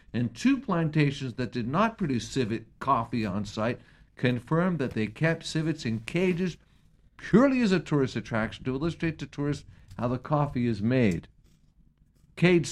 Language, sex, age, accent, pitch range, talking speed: English, male, 50-69, American, 125-165 Hz, 155 wpm